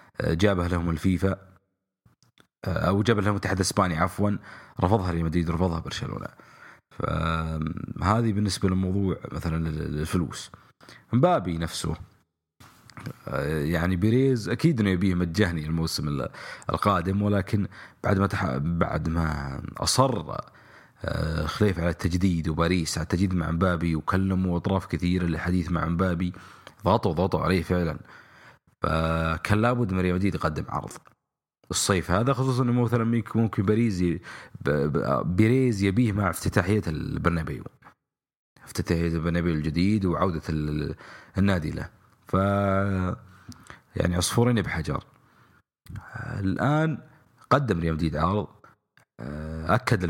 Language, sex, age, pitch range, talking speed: English, male, 30-49, 85-105 Hz, 105 wpm